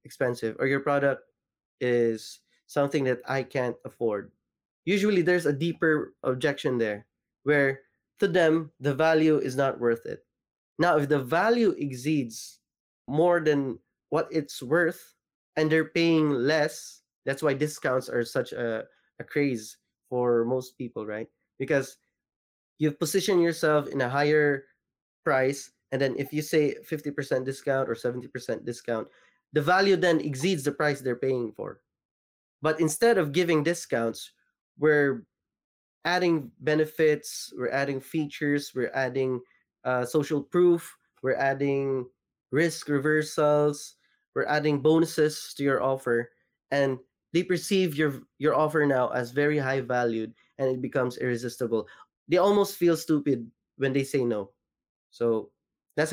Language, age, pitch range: Filipino, 20-39, 130-155 Hz